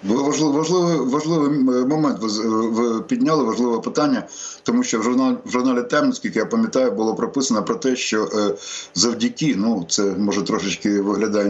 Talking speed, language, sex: 140 wpm, Ukrainian, male